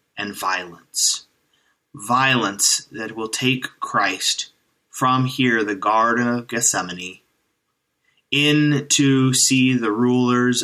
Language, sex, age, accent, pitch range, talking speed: English, male, 20-39, American, 105-130 Hz, 100 wpm